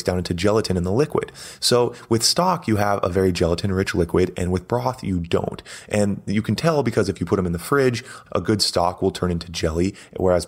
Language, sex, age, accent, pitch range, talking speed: English, male, 30-49, American, 90-110 Hz, 230 wpm